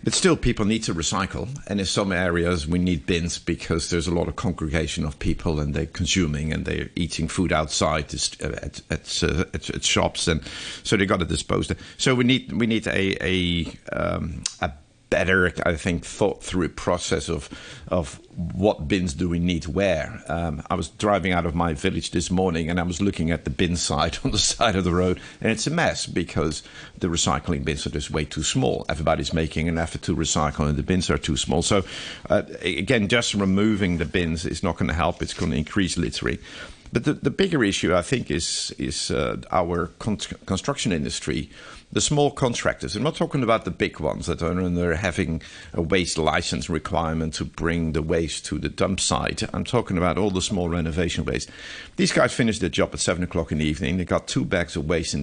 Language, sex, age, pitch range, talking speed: English, male, 50-69, 80-100 Hz, 210 wpm